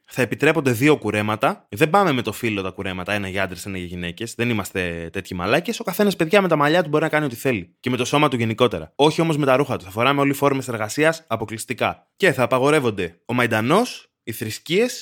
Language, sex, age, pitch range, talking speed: Greek, male, 20-39, 110-150 Hz, 235 wpm